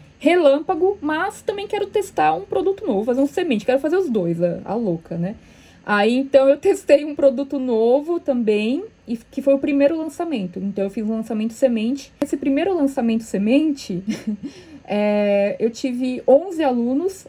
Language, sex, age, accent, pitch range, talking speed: Portuguese, female, 20-39, Brazilian, 225-285 Hz, 165 wpm